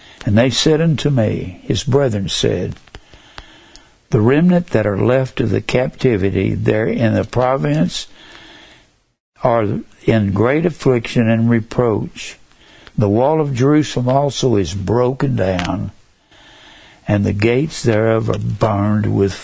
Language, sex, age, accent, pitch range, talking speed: English, male, 60-79, American, 110-140 Hz, 125 wpm